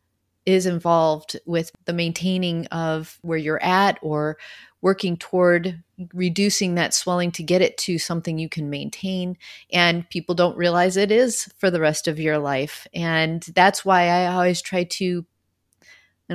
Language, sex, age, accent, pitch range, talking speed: English, female, 30-49, American, 165-190 Hz, 160 wpm